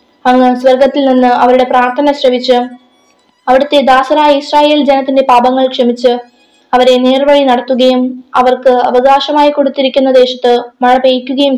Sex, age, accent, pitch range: female, 20-39, native, 250-275 Hz